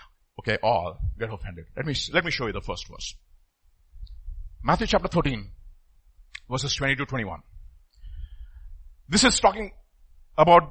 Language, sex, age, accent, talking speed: English, male, 50-69, Indian, 135 wpm